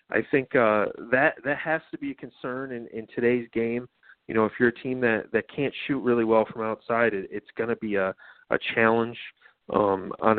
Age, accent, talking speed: 40-59, American, 215 wpm